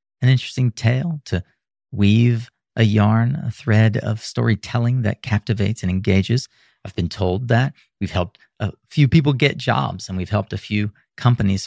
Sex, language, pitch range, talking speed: male, English, 95-115 Hz, 165 wpm